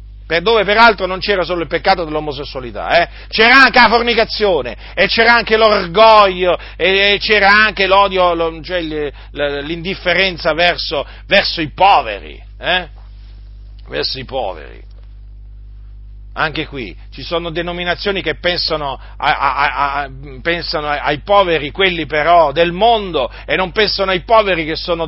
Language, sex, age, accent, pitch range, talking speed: Italian, male, 40-59, native, 135-190 Hz, 130 wpm